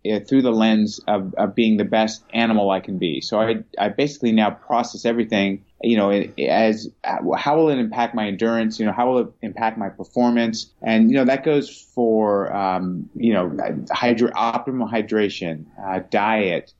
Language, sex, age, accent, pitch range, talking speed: English, male, 30-49, American, 100-120 Hz, 175 wpm